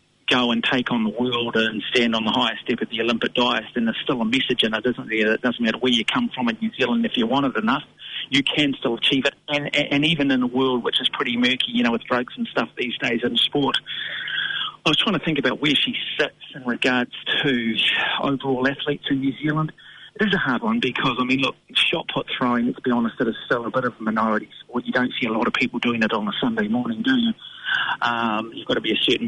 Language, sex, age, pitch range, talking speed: English, male, 40-59, 115-140 Hz, 255 wpm